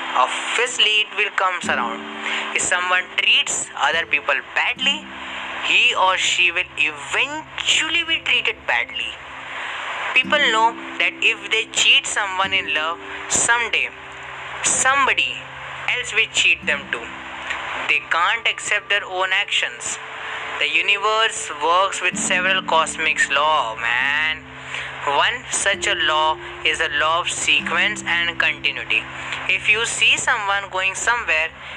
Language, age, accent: Hindi, 10-29, native